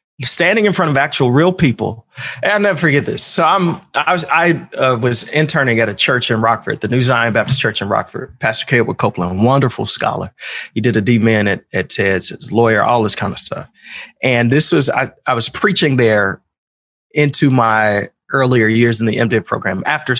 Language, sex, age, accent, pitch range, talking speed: English, male, 30-49, American, 120-165 Hz, 205 wpm